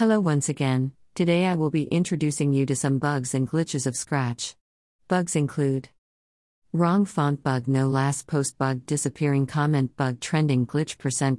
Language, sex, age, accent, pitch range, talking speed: English, female, 50-69, American, 130-160 Hz, 165 wpm